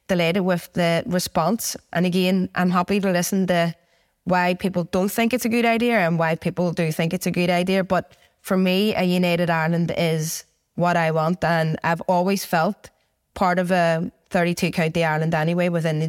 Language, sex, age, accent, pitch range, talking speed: English, female, 20-39, Irish, 165-190 Hz, 185 wpm